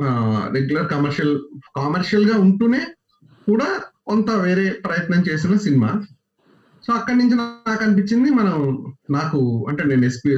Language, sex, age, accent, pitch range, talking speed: Telugu, male, 30-49, native, 120-200 Hz, 115 wpm